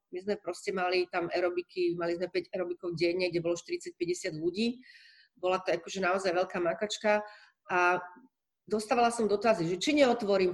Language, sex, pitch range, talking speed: Slovak, female, 175-215 Hz, 165 wpm